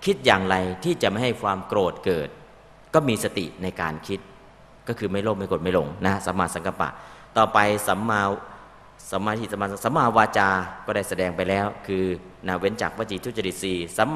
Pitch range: 95-125 Hz